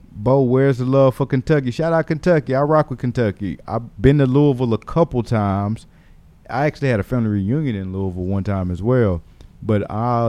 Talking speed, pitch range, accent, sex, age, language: 200 wpm, 110-140 Hz, American, male, 30-49, English